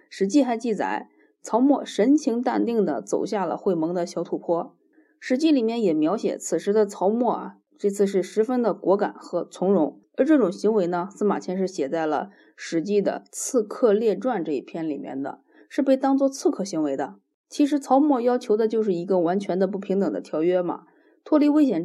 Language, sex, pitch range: Chinese, female, 175-250 Hz